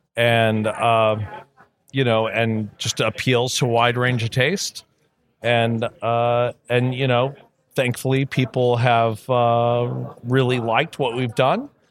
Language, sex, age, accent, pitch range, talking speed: French, male, 40-59, American, 115-135 Hz, 135 wpm